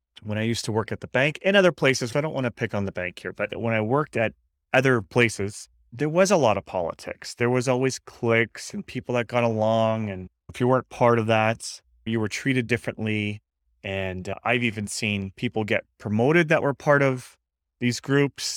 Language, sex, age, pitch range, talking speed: English, male, 30-49, 105-130 Hz, 215 wpm